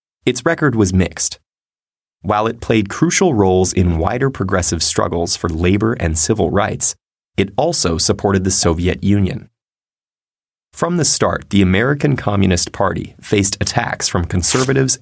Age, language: 30-49, English